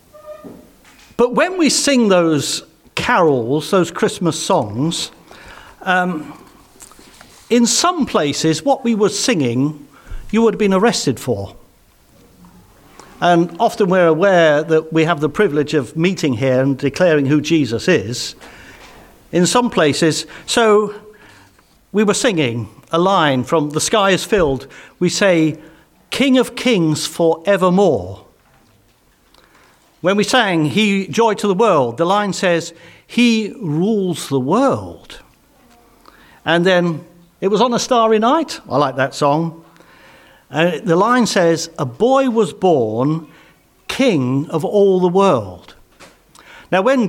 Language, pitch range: English, 155-215 Hz